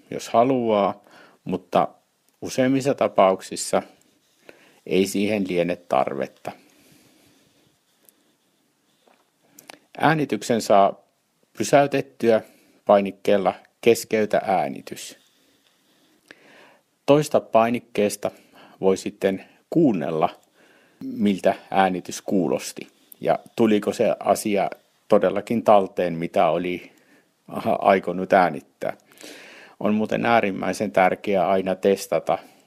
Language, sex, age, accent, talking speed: Finnish, male, 60-79, native, 70 wpm